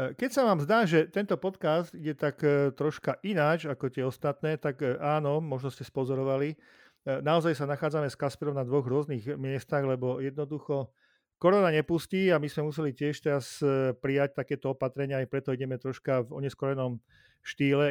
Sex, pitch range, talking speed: male, 130-150 Hz, 160 wpm